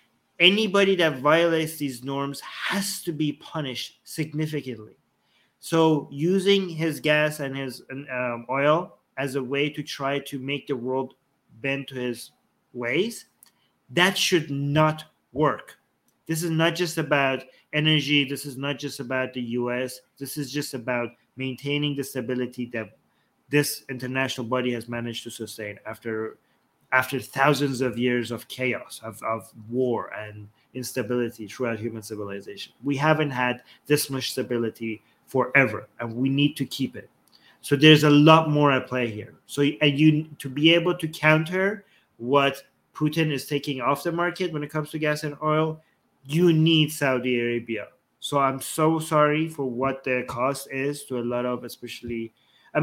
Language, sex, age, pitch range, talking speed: English, male, 30-49, 125-155 Hz, 160 wpm